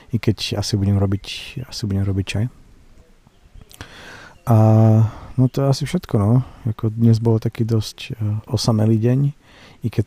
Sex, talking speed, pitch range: male, 145 wpm, 95-110 Hz